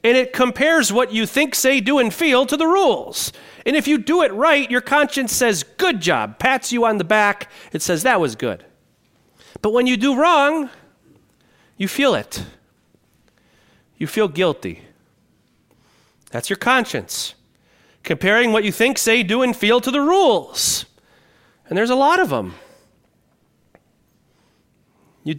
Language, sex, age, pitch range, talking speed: English, male, 40-59, 190-260 Hz, 155 wpm